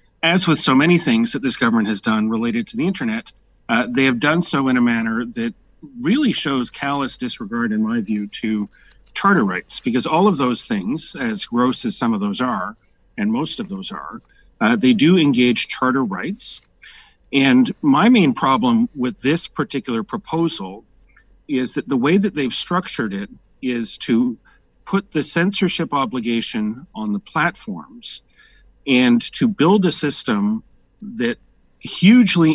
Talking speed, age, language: 160 wpm, 40-59, English